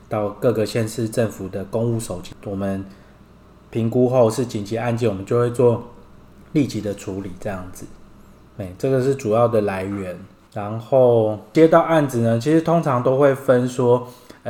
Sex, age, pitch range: male, 20-39, 100-125 Hz